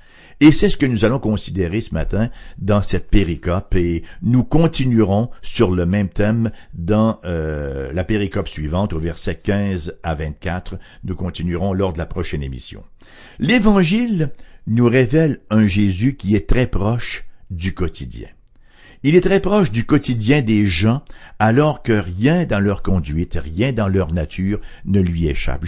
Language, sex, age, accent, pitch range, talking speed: English, male, 60-79, French, 90-130 Hz, 160 wpm